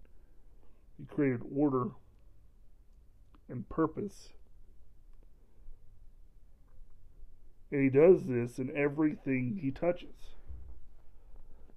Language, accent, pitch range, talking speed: English, American, 100-140 Hz, 65 wpm